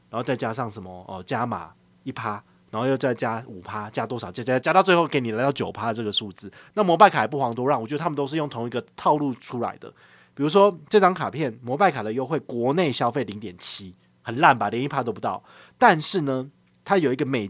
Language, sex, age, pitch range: Chinese, male, 30-49, 110-155 Hz